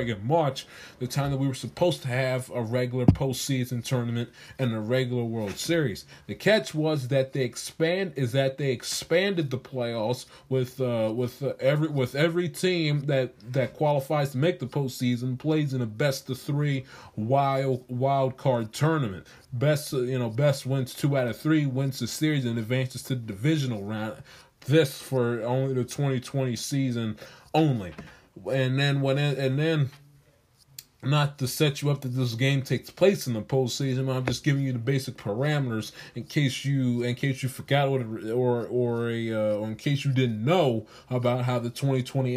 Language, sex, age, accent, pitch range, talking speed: English, male, 20-39, American, 120-145 Hz, 180 wpm